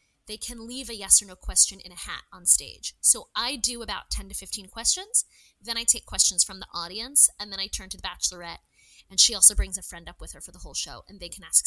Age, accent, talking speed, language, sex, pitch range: 20-39, American, 265 wpm, English, female, 195-240 Hz